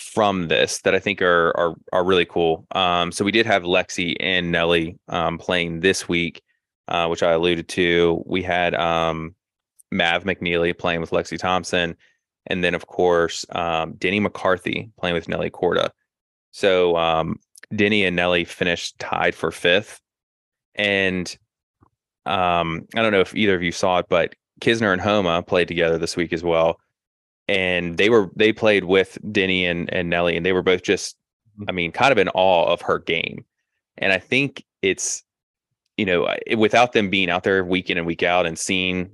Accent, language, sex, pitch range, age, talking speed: American, English, male, 85-95 Hz, 20-39, 185 wpm